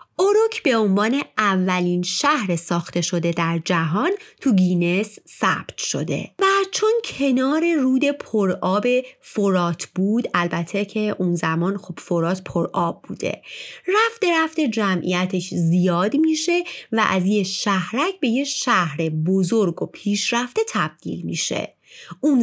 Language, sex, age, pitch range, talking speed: Persian, female, 30-49, 175-270 Hz, 125 wpm